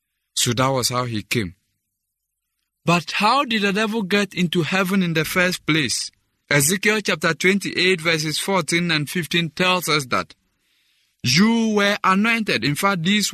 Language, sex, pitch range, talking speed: English, male, 115-180 Hz, 155 wpm